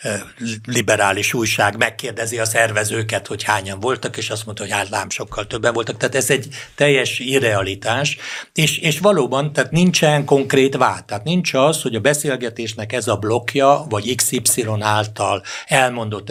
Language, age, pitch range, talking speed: Hungarian, 60-79, 105-135 Hz, 150 wpm